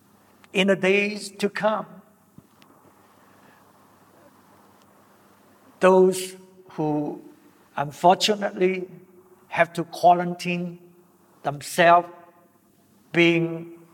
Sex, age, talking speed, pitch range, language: male, 60-79, 55 wpm, 150-205 Hz, English